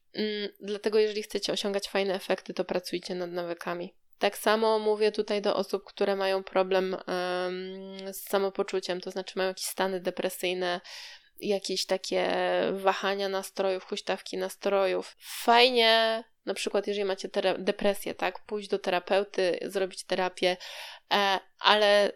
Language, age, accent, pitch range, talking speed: Polish, 20-39, native, 185-210 Hz, 135 wpm